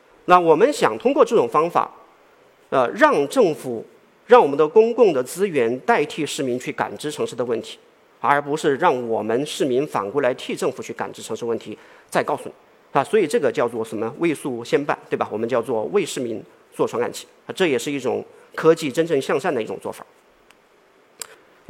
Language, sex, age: Chinese, male, 40-59